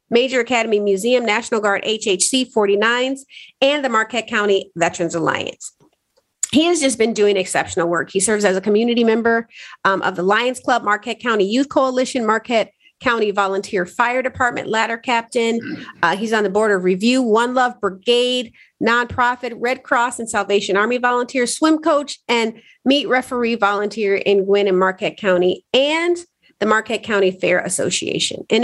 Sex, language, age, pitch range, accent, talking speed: female, English, 40-59, 200-255 Hz, American, 160 wpm